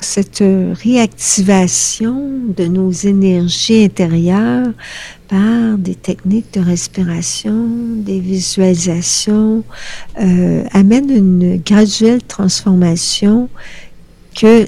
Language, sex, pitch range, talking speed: French, female, 185-220 Hz, 80 wpm